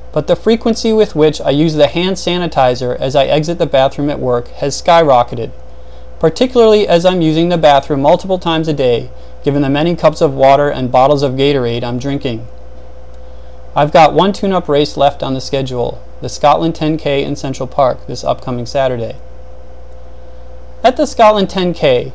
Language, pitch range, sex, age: English, 115-165 Hz, male, 30-49